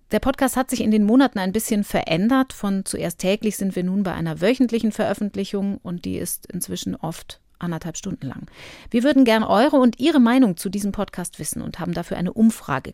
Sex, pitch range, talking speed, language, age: female, 175-230 Hz, 205 wpm, German, 40-59